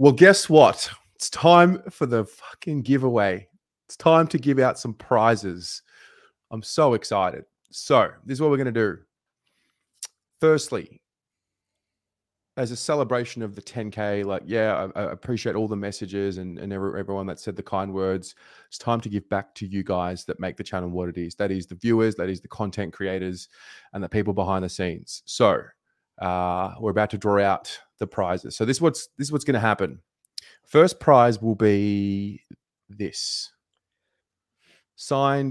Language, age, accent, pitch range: English, 20-39, Australian, 95-115 Hz